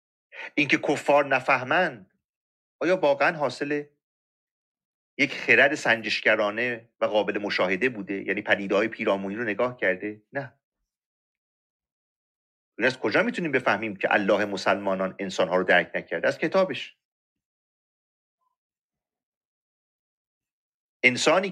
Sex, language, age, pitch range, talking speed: male, Persian, 40-59, 120-160 Hz, 95 wpm